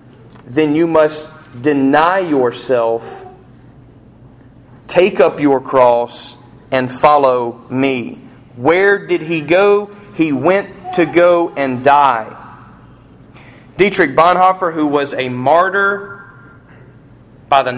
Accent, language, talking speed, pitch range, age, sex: American, English, 100 wpm, 125-170 Hz, 40-59, male